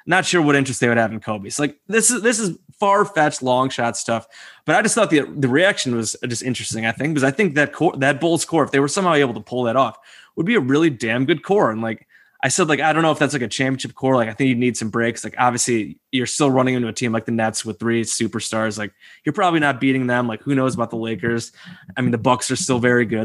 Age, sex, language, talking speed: 20-39, male, English, 285 wpm